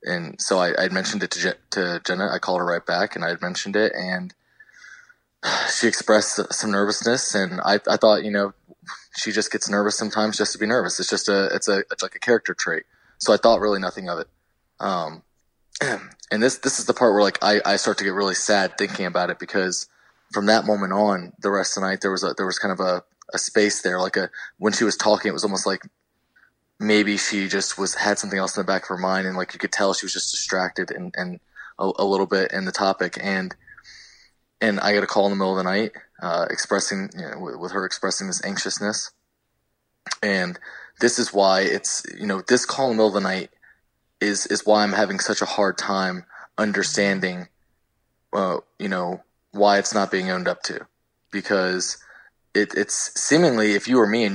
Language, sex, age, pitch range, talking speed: English, male, 20-39, 95-105 Hz, 225 wpm